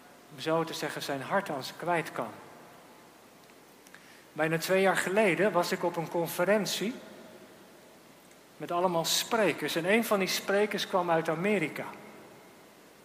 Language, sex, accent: Dutch, male, Dutch